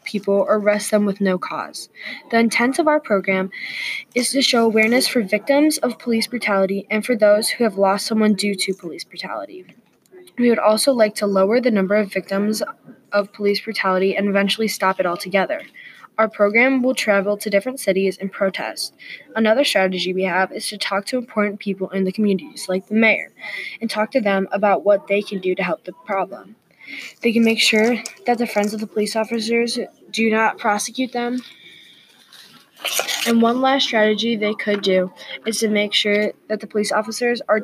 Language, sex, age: English, female, 10-29